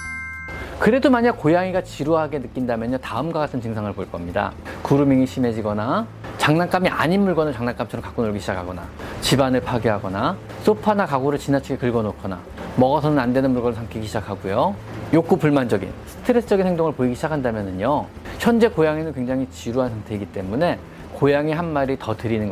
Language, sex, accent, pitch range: Korean, male, native, 110-180 Hz